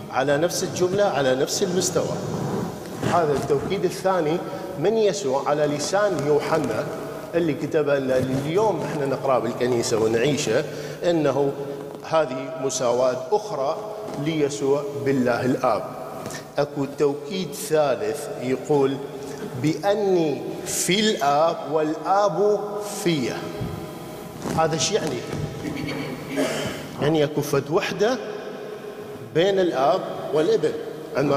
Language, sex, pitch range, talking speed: English, male, 140-175 Hz, 90 wpm